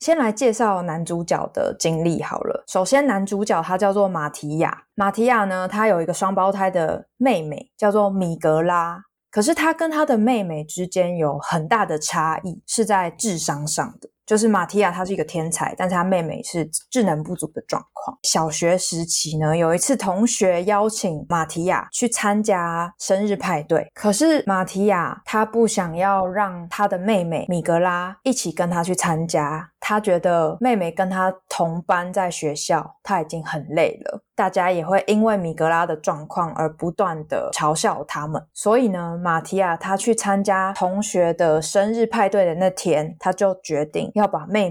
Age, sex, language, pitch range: 20-39, female, Chinese, 165-205 Hz